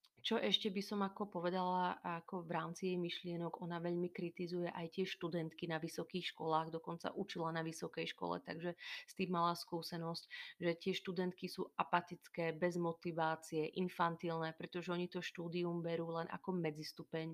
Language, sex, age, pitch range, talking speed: Slovak, female, 30-49, 160-175 Hz, 165 wpm